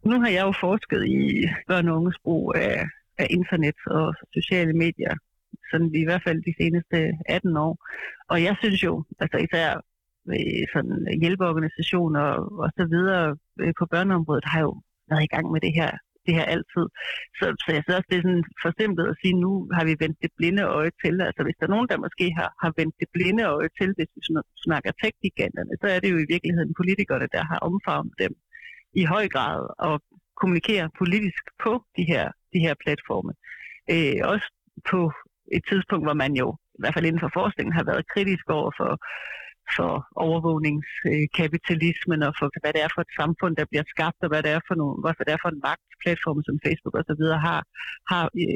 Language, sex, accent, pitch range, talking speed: Danish, female, native, 160-185 Hz, 195 wpm